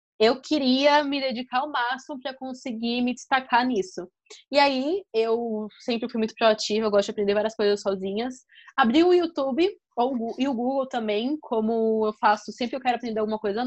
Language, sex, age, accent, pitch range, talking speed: Portuguese, female, 20-39, Brazilian, 215-280 Hz, 180 wpm